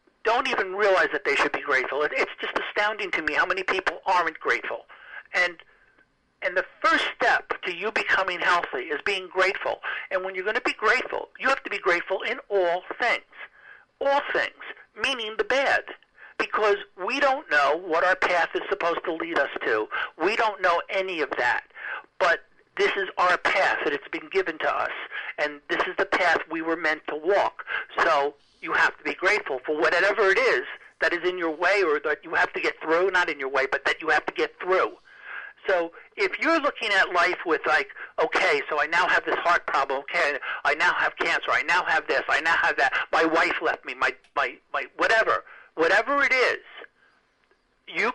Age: 60-79